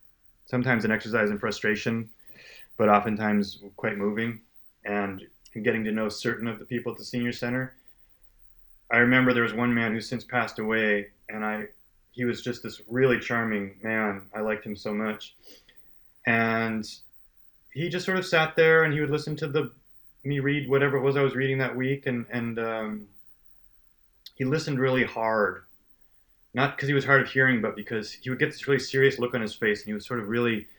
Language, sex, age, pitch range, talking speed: English, male, 30-49, 105-130 Hz, 195 wpm